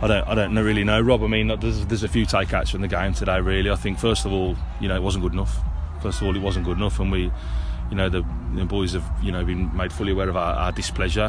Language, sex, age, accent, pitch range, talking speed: English, male, 20-39, British, 90-100 Hz, 300 wpm